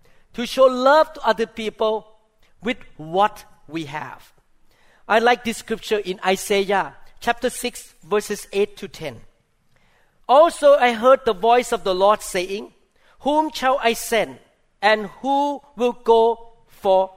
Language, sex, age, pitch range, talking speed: English, male, 50-69, 190-265 Hz, 140 wpm